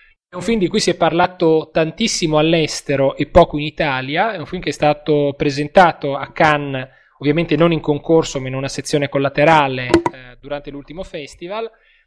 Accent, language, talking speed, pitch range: native, Italian, 180 wpm, 140-170 Hz